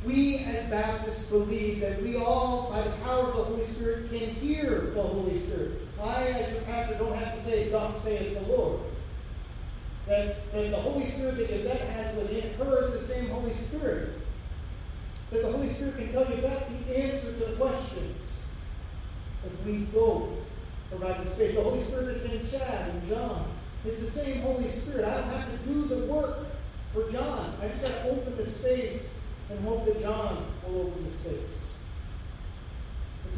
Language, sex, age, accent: English, male, 40-59, American